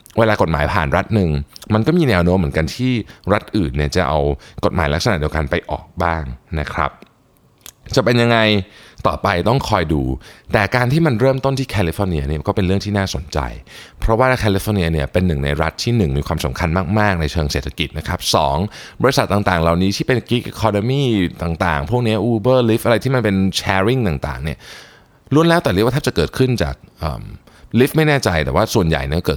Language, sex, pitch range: Thai, male, 80-115 Hz